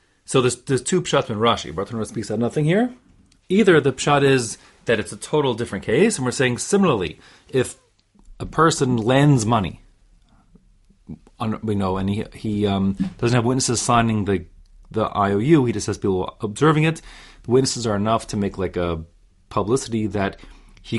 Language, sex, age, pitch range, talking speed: English, male, 30-49, 95-130 Hz, 175 wpm